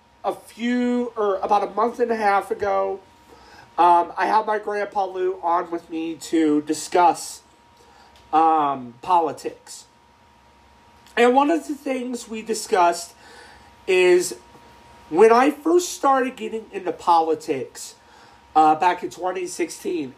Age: 40-59